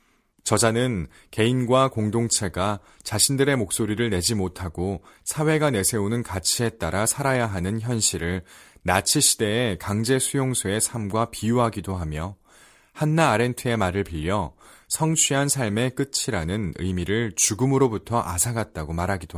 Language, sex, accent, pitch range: Korean, male, native, 95-130 Hz